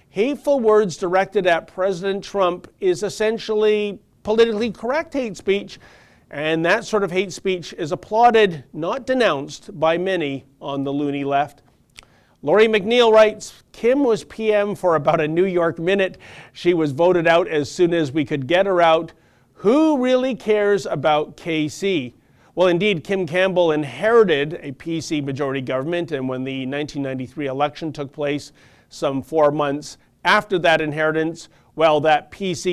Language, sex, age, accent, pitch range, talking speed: English, male, 50-69, American, 150-210 Hz, 150 wpm